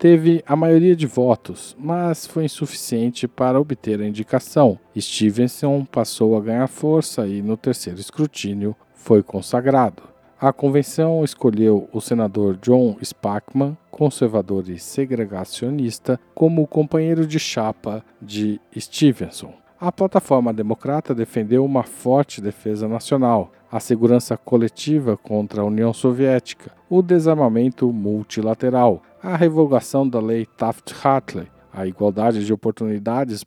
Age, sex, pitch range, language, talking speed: 50-69, male, 110-140 Hz, Portuguese, 120 wpm